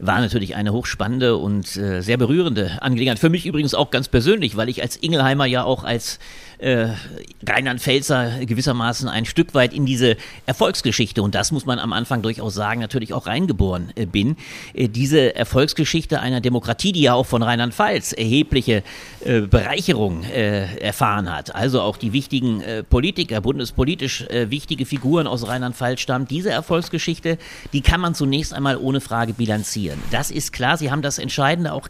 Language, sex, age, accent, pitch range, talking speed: German, male, 40-59, German, 110-145 Hz, 160 wpm